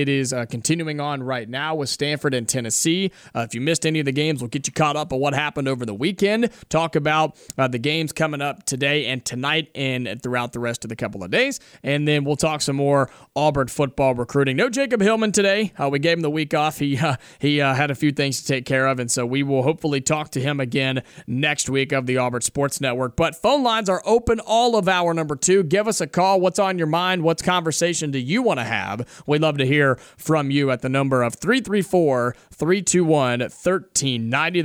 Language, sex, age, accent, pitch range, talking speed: English, male, 30-49, American, 135-165 Hz, 230 wpm